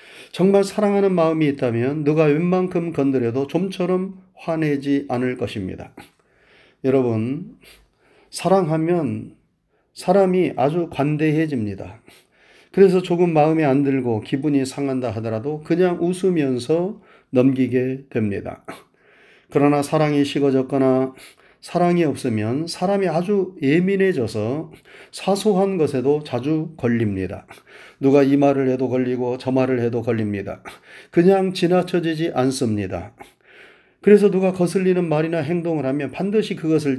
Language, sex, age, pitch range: Korean, male, 30-49, 130-175 Hz